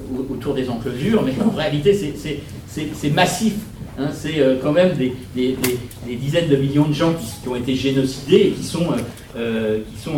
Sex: male